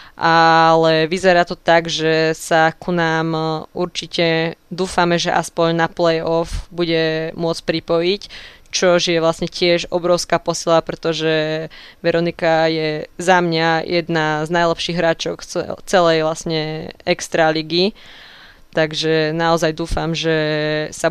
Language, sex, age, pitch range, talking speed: Slovak, female, 20-39, 165-180 Hz, 115 wpm